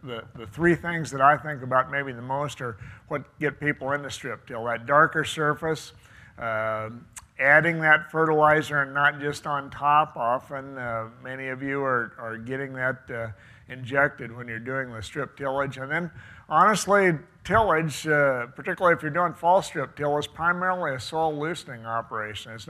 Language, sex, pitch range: English, male, 115-155 Hz